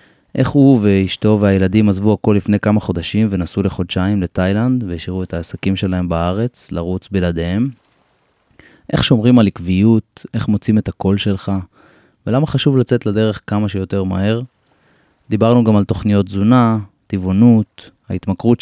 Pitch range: 95-115 Hz